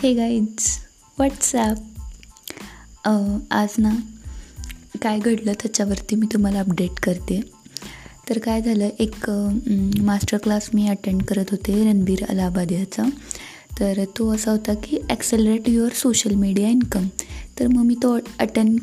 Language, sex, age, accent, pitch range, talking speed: Marathi, female, 20-39, native, 200-225 Hz, 125 wpm